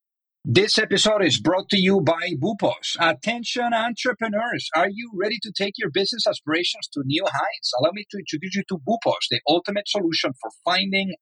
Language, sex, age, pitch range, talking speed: English, male, 50-69, 145-200 Hz, 175 wpm